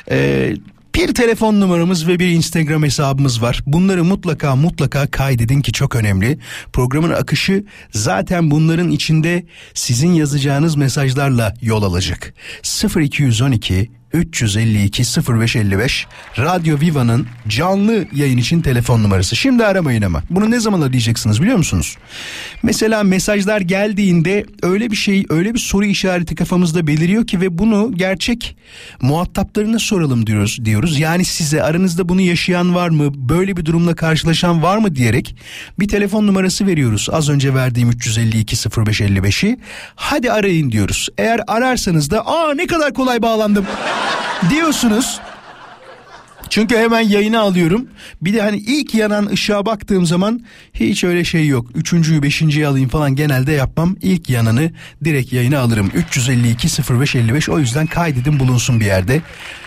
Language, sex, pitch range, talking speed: Turkish, male, 135-200 Hz, 135 wpm